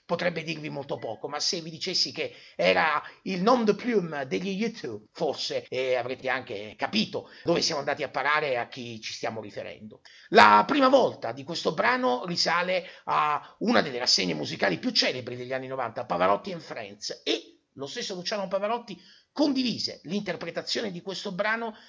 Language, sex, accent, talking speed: Italian, male, native, 170 wpm